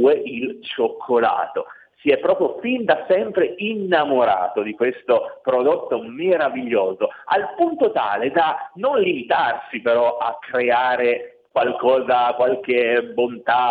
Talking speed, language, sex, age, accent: 110 wpm, Italian, male, 40-59, native